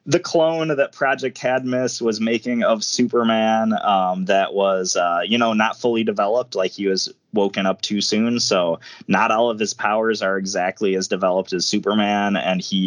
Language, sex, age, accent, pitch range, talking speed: English, male, 20-39, American, 95-115 Hz, 180 wpm